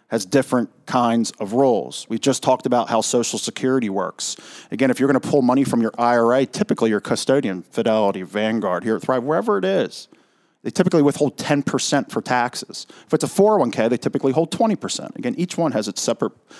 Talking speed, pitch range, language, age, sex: 190 wpm, 120-150 Hz, English, 40-59, male